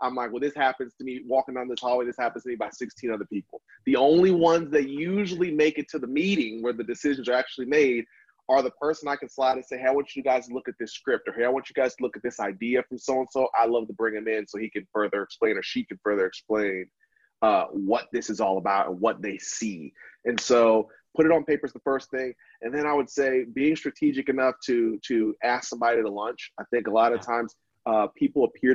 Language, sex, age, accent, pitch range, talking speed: English, male, 30-49, American, 115-135 Hz, 260 wpm